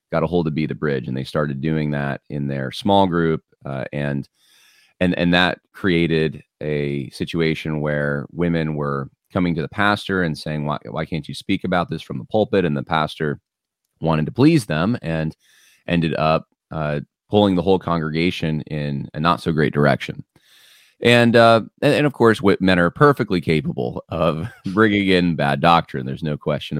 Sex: male